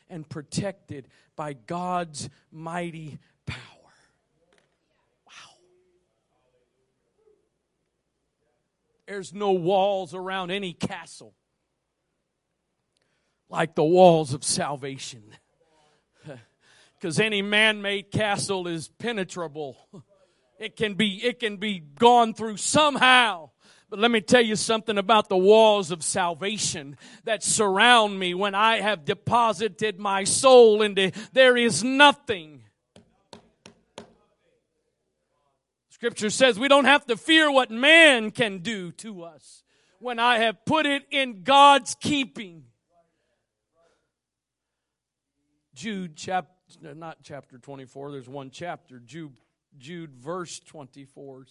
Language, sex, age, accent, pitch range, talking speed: English, male, 40-59, American, 155-225 Hz, 105 wpm